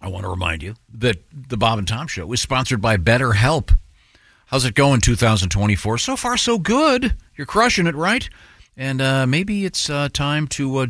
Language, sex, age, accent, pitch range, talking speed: English, male, 50-69, American, 95-130 Hz, 195 wpm